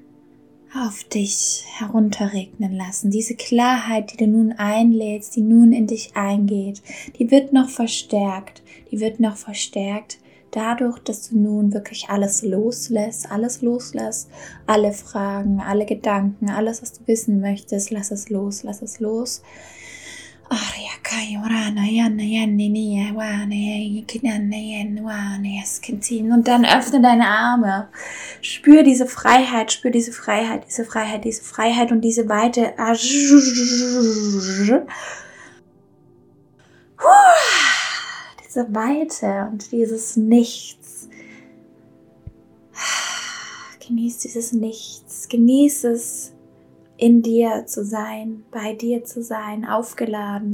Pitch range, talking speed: 205-235 Hz, 100 wpm